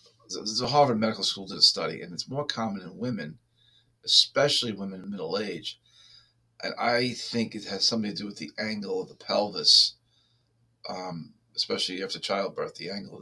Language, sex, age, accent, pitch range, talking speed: English, male, 40-59, American, 105-125 Hz, 175 wpm